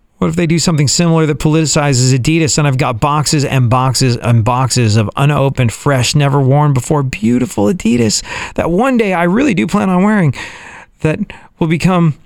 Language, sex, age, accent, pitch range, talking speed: English, male, 40-59, American, 125-170 Hz, 180 wpm